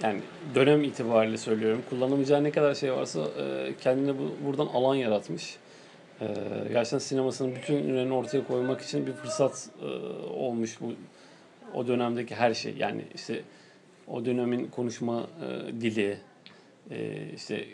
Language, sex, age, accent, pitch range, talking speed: Turkish, male, 40-59, native, 120-145 Hz, 120 wpm